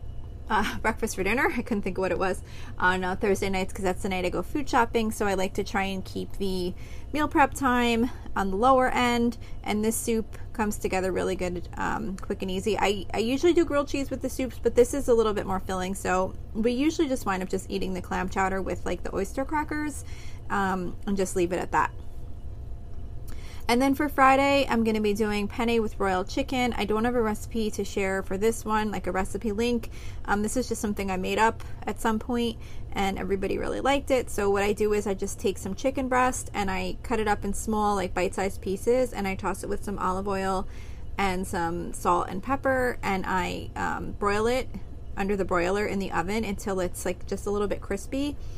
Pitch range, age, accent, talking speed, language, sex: 190-240 Hz, 20-39, American, 225 wpm, English, female